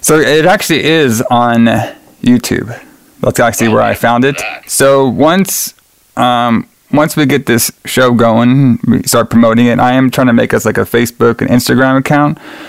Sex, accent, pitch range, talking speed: male, American, 115-135 Hz, 180 wpm